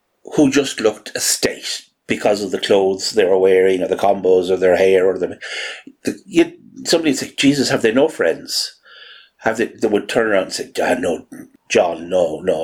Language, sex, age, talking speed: English, male, 60-79, 205 wpm